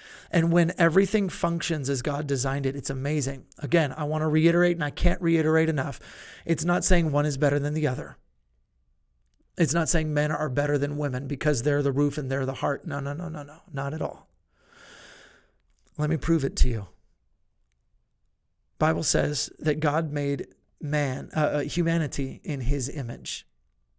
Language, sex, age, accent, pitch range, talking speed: English, male, 30-49, American, 140-165 Hz, 175 wpm